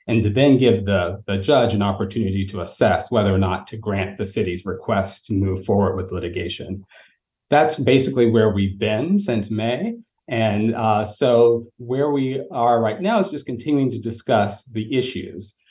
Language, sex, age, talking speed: English, male, 30-49, 175 wpm